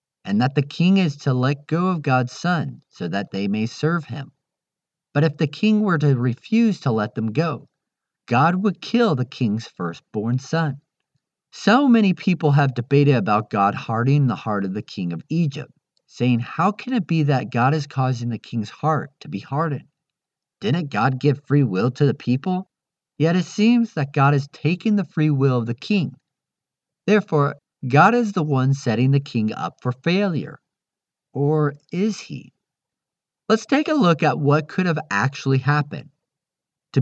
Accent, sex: American, male